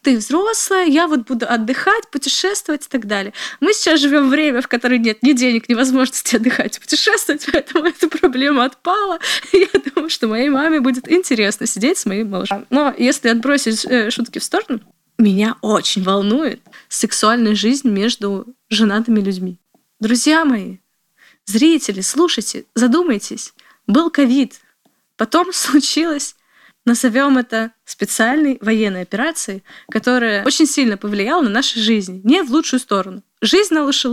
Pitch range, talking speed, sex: 225-295 Hz, 150 wpm, female